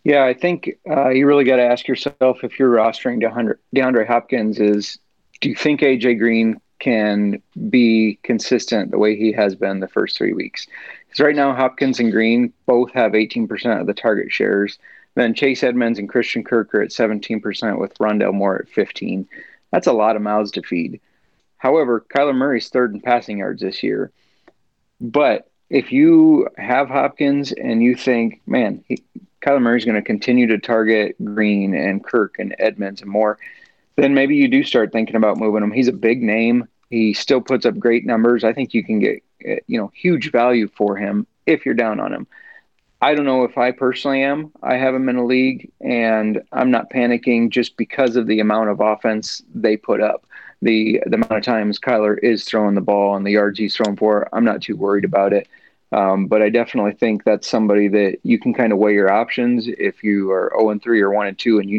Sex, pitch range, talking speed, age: male, 105-125 Hz, 200 wpm, 30-49